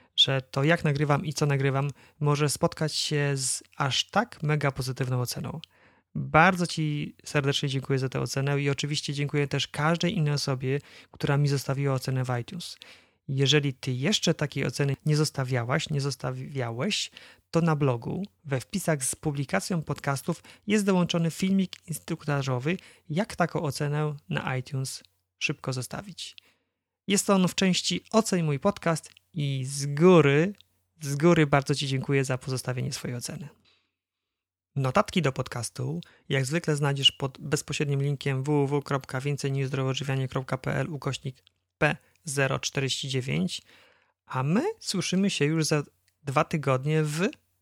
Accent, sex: native, male